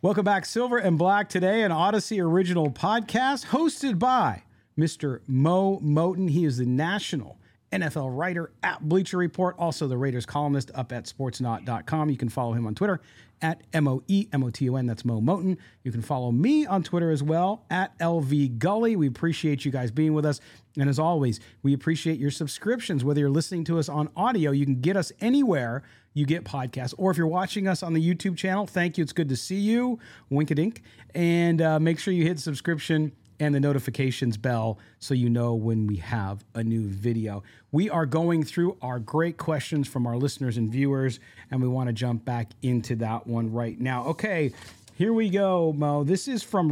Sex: male